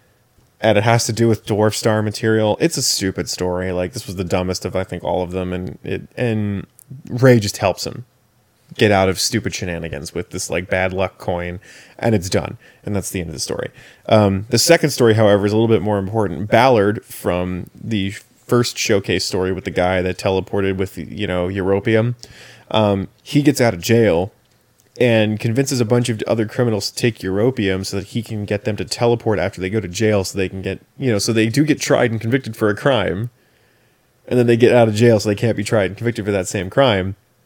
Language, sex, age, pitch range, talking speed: English, male, 20-39, 95-120 Hz, 225 wpm